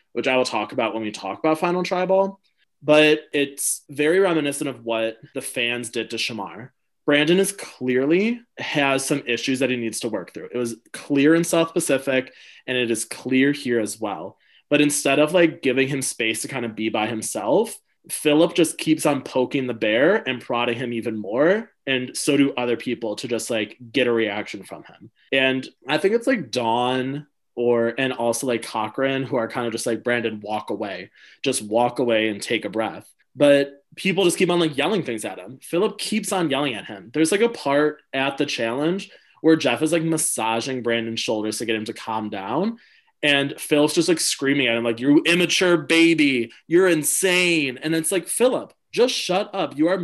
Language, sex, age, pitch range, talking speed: English, male, 20-39, 120-170 Hz, 205 wpm